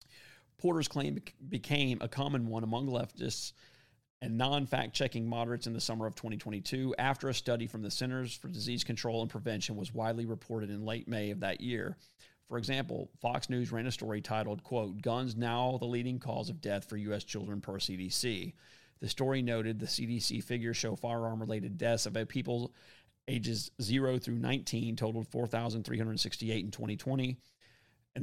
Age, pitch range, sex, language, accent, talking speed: 30-49, 110-130 Hz, male, English, American, 165 wpm